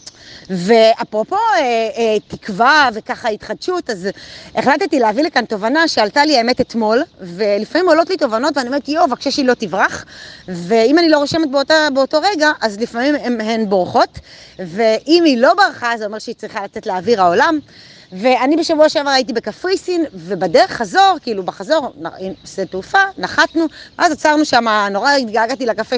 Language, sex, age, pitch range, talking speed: Hebrew, female, 30-49, 210-300 Hz, 150 wpm